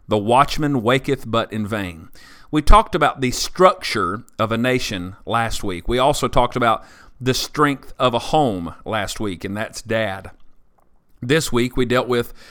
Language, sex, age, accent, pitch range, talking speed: English, male, 40-59, American, 105-130 Hz, 170 wpm